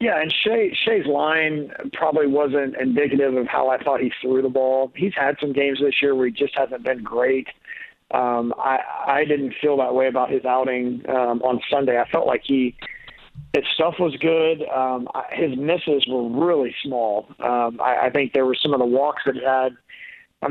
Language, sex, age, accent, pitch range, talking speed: English, male, 40-59, American, 125-145 Hz, 200 wpm